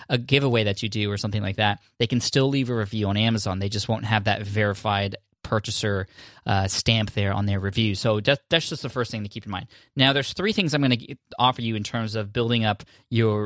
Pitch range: 105-130 Hz